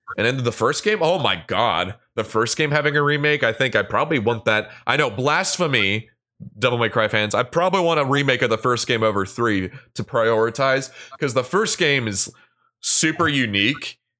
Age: 20-39